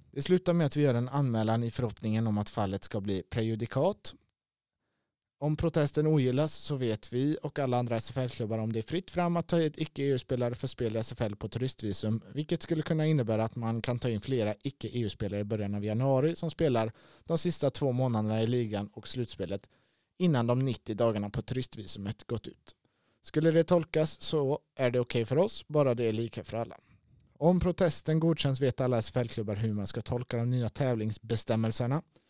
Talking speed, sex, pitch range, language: 190 wpm, male, 110-145 Hz, Swedish